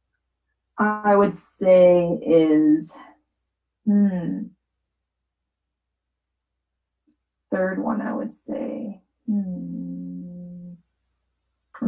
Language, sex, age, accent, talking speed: English, female, 20-39, American, 55 wpm